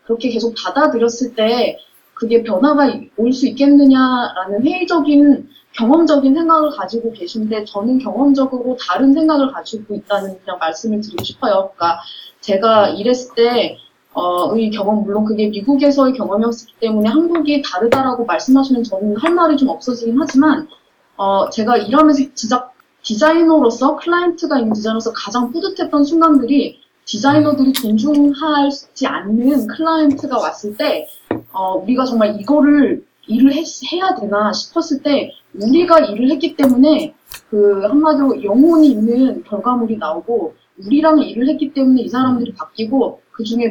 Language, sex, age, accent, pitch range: Korean, female, 20-39, native, 220-290 Hz